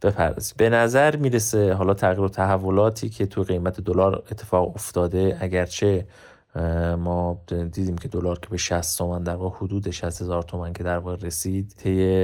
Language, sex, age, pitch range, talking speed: Persian, male, 30-49, 90-105 Hz, 160 wpm